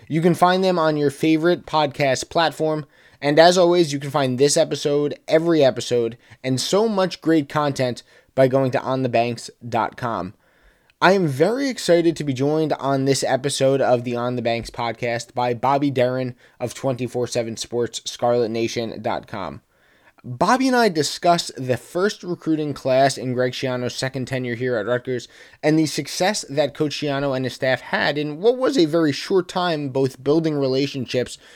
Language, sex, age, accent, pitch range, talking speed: English, male, 20-39, American, 125-155 Hz, 165 wpm